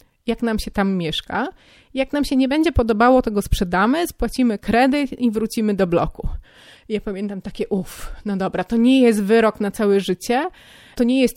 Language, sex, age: Polish, female, 30-49